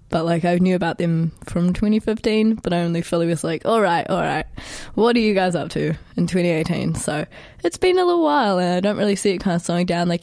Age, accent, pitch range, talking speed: 20-39, Australian, 170-220 Hz, 260 wpm